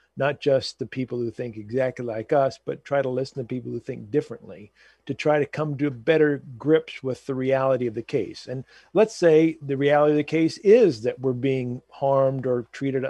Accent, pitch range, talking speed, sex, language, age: American, 120-150 Hz, 210 wpm, male, English, 40-59